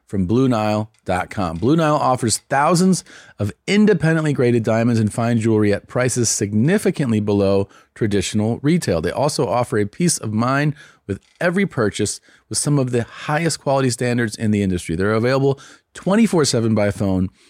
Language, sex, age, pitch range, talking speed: English, male, 40-59, 100-135 Hz, 150 wpm